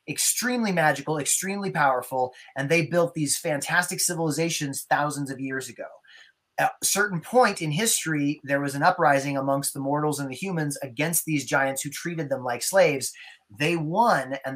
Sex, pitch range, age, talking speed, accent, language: male, 140-180 Hz, 30-49, 170 wpm, American, English